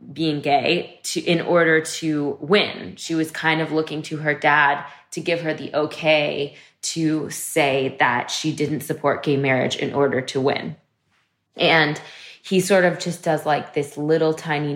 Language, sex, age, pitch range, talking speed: English, female, 20-39, 145-170 Hz, 170 wpm